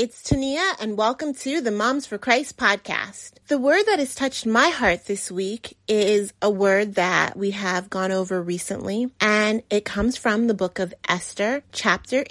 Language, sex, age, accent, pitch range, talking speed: English, female, 30-49, American, 195-255 Hz, 180 wpm